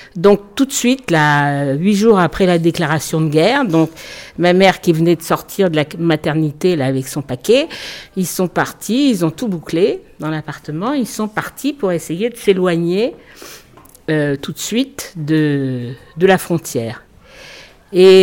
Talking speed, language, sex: 170 wpm, English, female